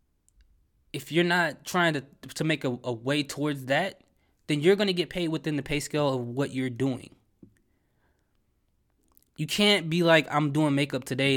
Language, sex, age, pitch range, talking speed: English, male, 20-39, 125-155 Hz, 180 wpm